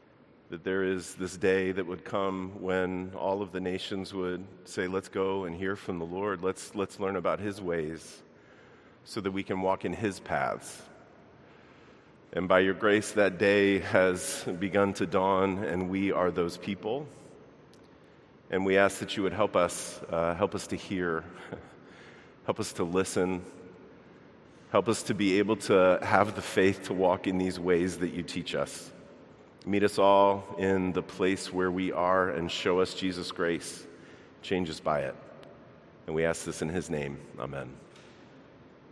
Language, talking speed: English, 175 wpm